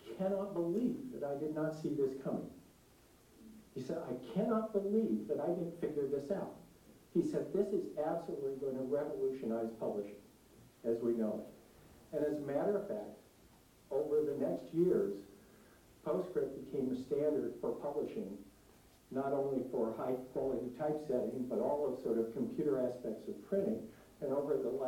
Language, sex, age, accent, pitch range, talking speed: English, male, 60-79, American, 125-165 Hz, 160 wpm